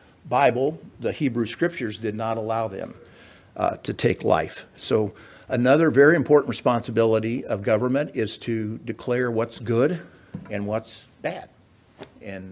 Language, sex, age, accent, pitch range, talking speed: English, male, 50-69, American, 110-135 Hz, 135 wpm